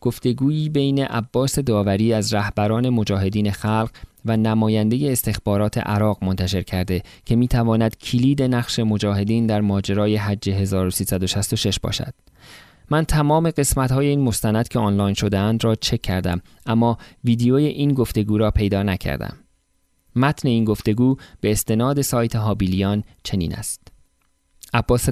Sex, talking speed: male, 130 wpm